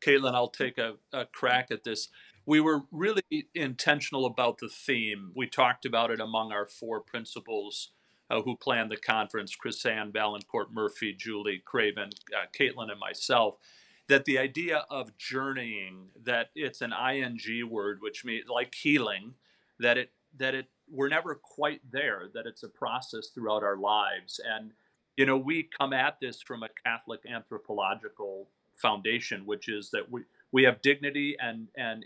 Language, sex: English, male